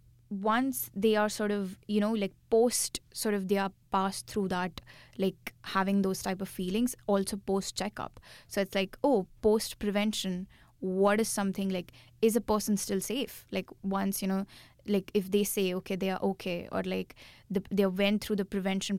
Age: 20-39